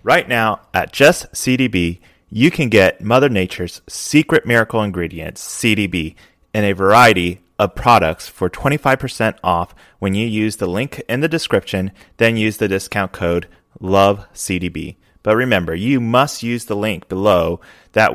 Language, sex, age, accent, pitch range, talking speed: English, male, 30-49, American, 95-130 Hz, 150 wpm